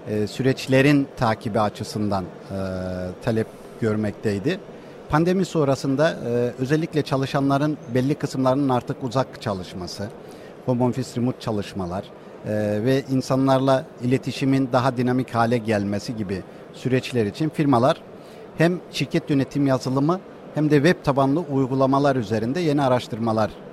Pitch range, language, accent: 115-145 Hz, Turkish, native